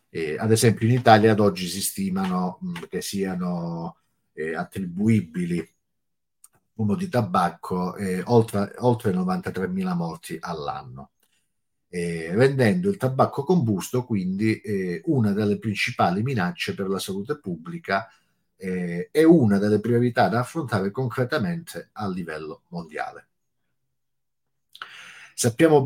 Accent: Italian